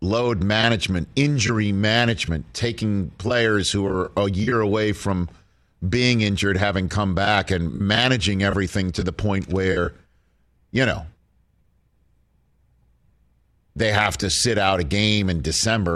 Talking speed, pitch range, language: 130 wpm, 90-110 Hz, English